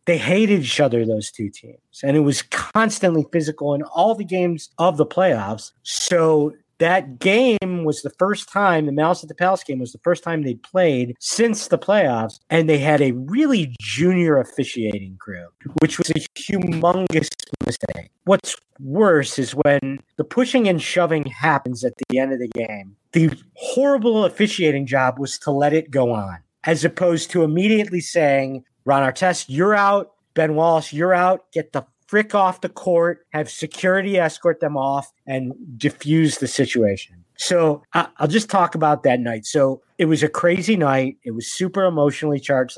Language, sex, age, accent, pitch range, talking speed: English, male, 50-69, American, 130-180 Hz, 175 wpm